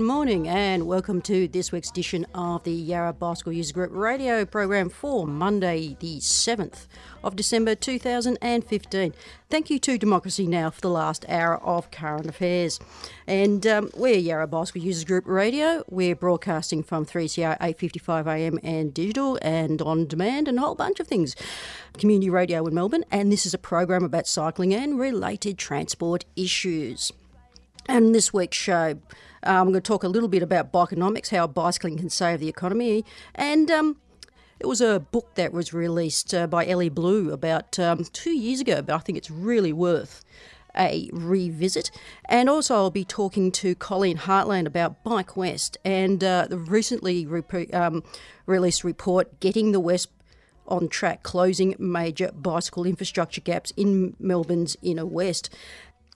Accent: Australian